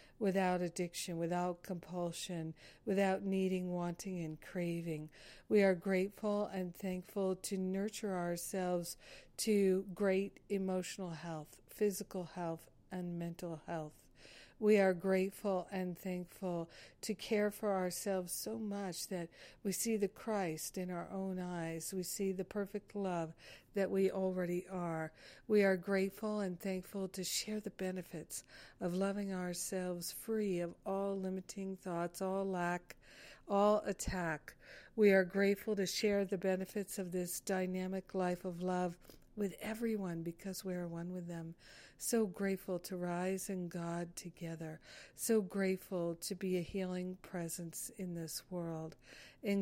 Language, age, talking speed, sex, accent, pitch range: English, 60-79, 140 wpm, female, American, 175-195 Hz